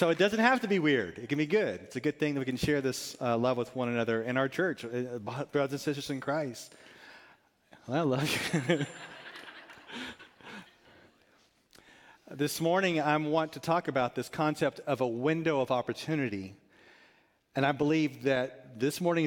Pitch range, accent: 135-160 Hz, American